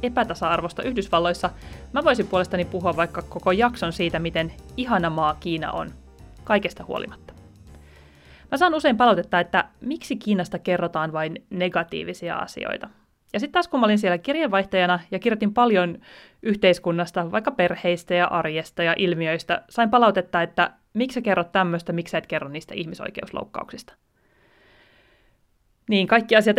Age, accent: 30-49, native